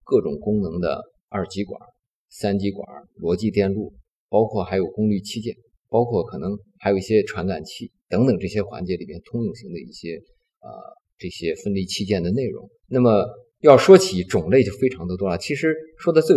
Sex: male